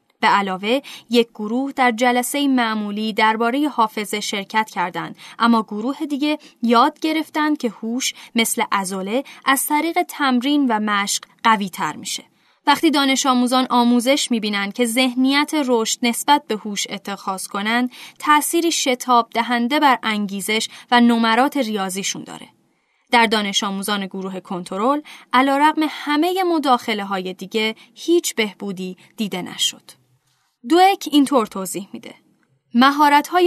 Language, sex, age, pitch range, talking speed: Persian, female, 10-29, 210-270 Hz, 125 wpm